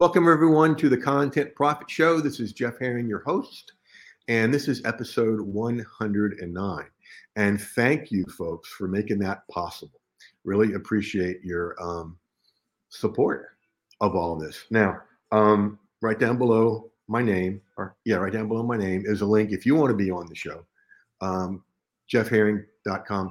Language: English